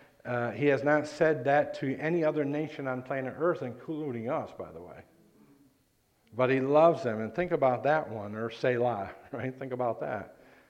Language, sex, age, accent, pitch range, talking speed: English, male, 50-69, American, 110-135 Hz, 185 wpm